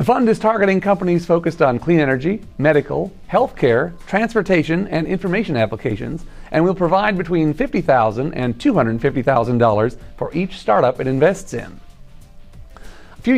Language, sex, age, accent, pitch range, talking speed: English, male, 40-59, American, 125-195 Hz, 140 wpm